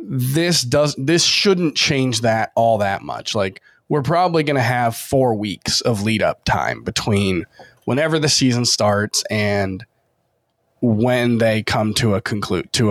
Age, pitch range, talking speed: 20-39, 110-135 Hz, 160 wpm